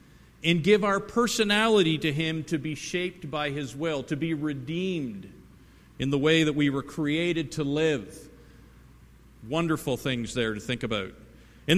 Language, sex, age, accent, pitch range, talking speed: English, male, 50-69, American, 140-180 Hz, 160 wpm